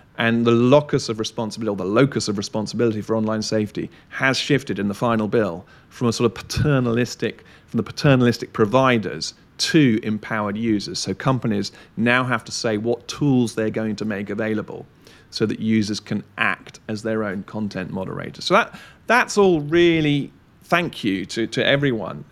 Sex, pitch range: male, 110-125 Hz